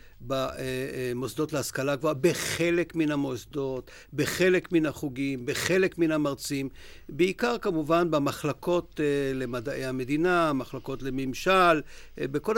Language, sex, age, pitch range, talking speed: Hebrew, male, 50-69, 140-175 Hz, 95 wpm